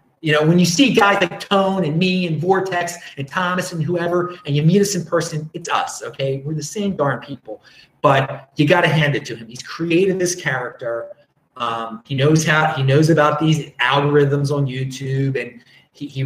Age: 30-49